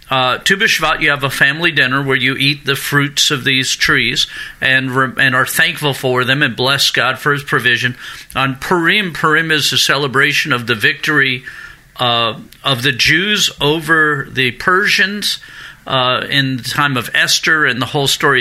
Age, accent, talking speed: 50-69, American, 175 wpm